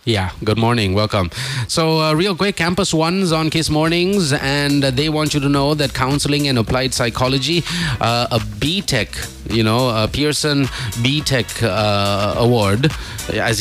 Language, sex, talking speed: English, male, 145 wpm